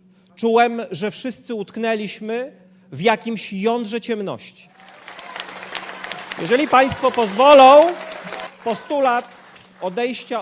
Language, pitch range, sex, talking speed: Polish, 185-235 Hz, male, 75 wpm